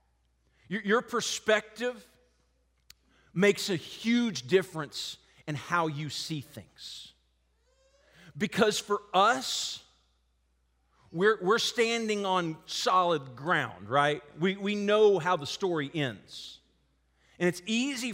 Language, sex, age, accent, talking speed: English, male, 40-59, American, 105 wpm